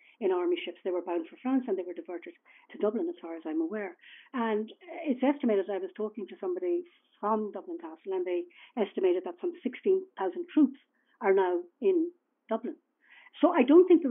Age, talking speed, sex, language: 60-79, 200 wpm, female, English